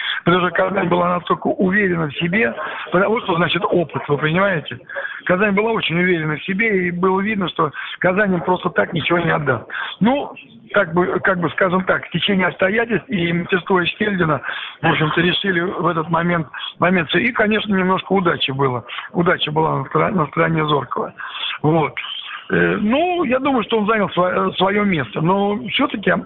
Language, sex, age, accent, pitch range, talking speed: Russian, male, 60-79, native, 160-195 Hz, 165 wpm